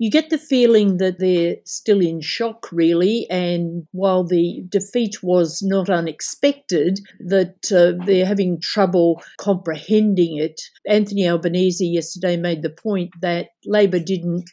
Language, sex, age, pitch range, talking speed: English, female, 50-69, 170-200 Hz, 135 wpm